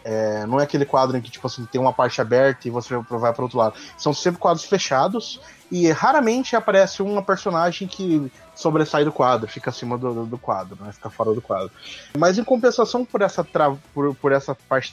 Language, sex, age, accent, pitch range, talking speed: Portuguese, male, 20-39, Brazilian, 130-185 Hz, 210 wpm